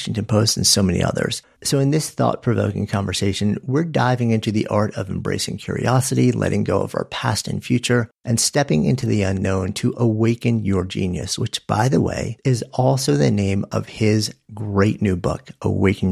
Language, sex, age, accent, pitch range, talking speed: English, male, 50-69, American, 100-125 Hz, 180 wpm